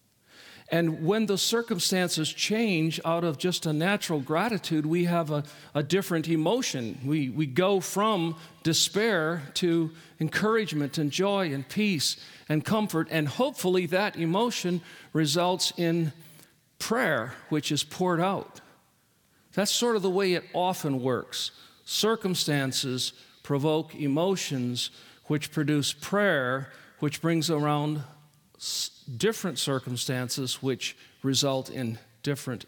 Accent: American